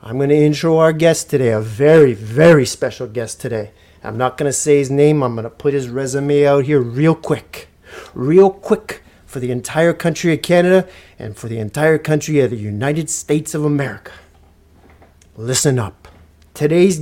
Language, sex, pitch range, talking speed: English, male, 120-170 Hz, 185 wpm